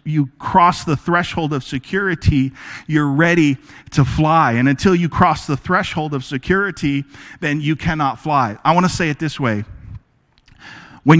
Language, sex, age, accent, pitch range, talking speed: English, male, 40-59, American, 135-170 Hz, 160 wpm